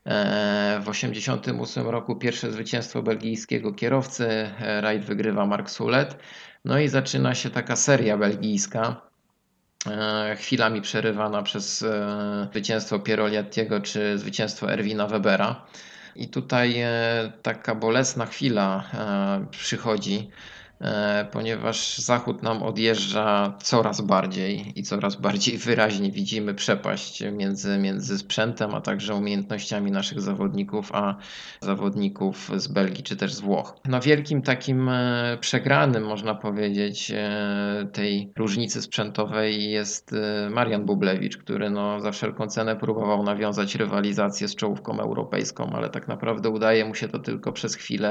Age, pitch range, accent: 20-39, 100-115 Hz, native